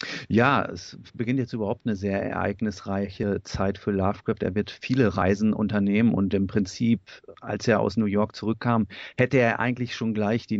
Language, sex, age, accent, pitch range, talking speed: German, male, 40-59, German, 100-120 Hz, 175 wpm